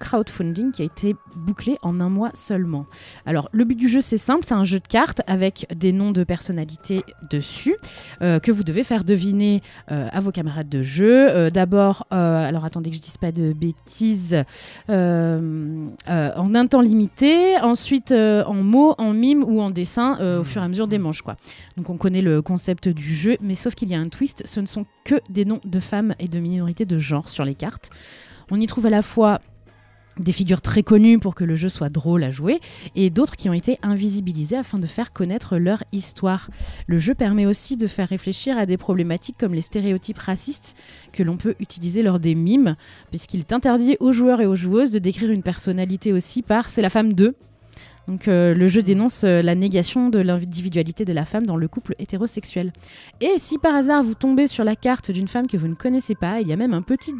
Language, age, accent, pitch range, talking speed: French, 30-49, French, 175-225 Hz, 225 wpm